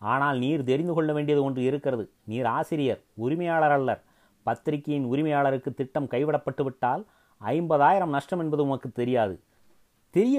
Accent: native